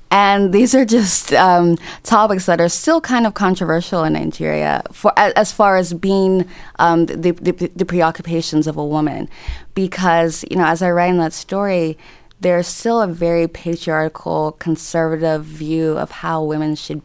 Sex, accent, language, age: female, American, English, 20-39